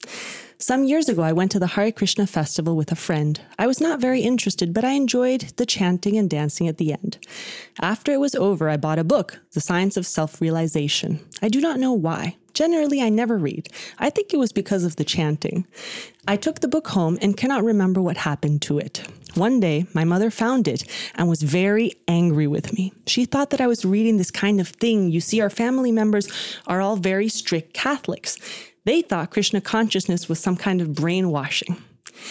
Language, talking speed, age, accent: English, 205 wpm, 20-39, American